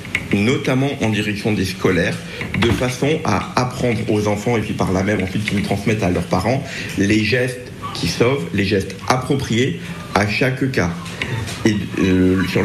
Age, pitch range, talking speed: 50-69, 100-125 Hz, 165 wpm